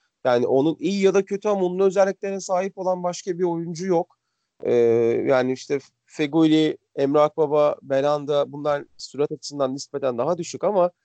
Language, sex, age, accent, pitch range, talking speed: Turkish, male, 40-59, native, 130-180 Hz, 160 wpm